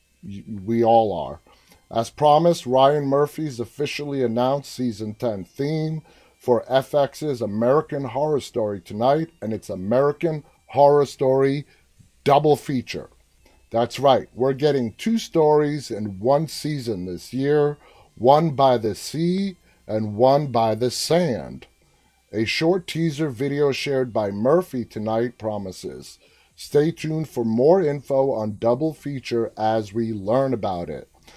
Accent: American